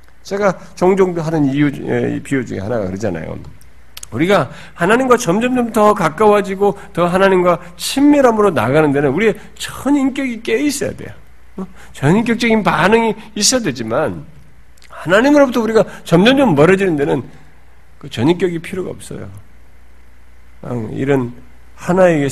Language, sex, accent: Korean, male, native